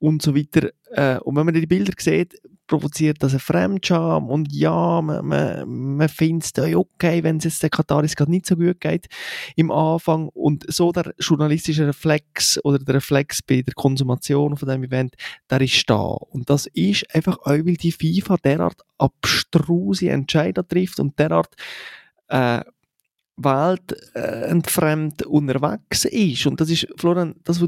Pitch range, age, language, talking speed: 135-165 Hz, 20-39, German, 160 wpm